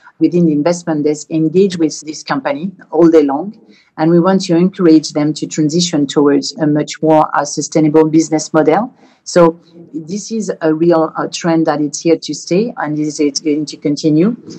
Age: 50-69